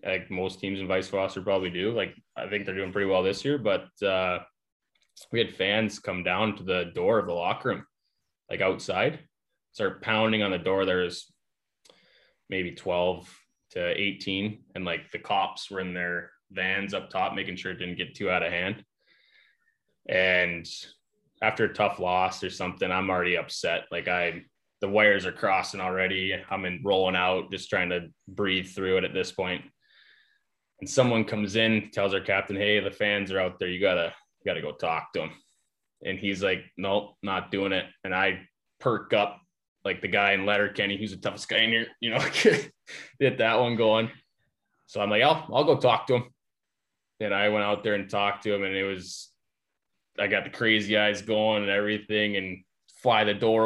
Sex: male